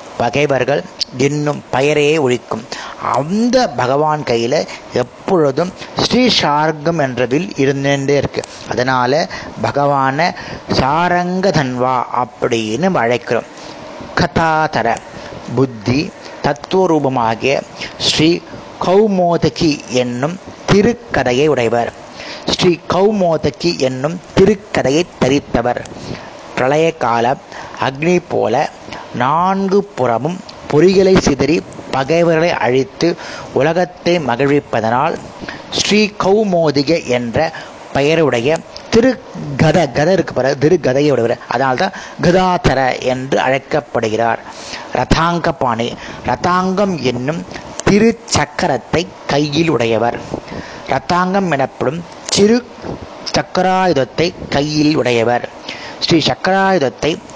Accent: native